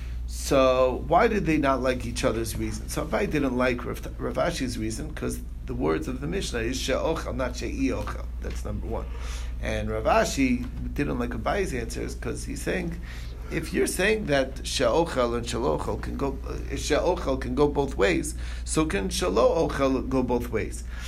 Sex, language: male, English